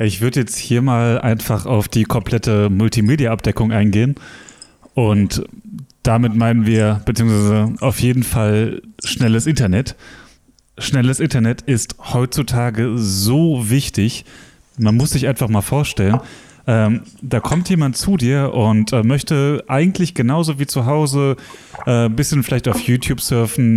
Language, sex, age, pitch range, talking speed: German, male, 30-49, 110-140 Hz, 135 wpm